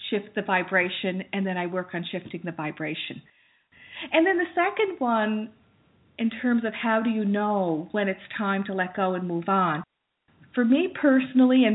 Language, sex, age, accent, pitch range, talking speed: English, female, 50-69, American, 195-250 Hz, 185 wpm